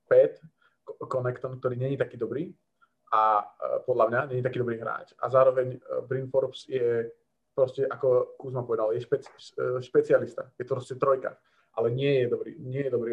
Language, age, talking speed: Slovak, 20-39, 175 wpm